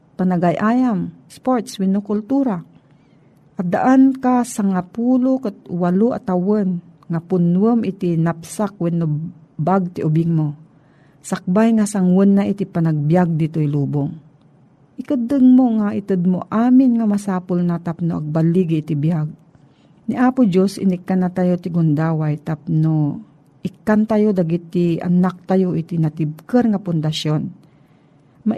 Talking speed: 125 wpm